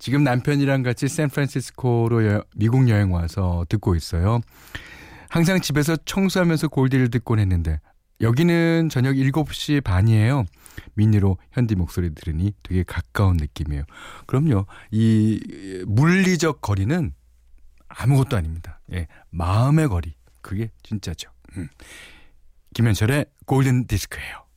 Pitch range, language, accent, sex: 90-130 Hz, Korean, native, male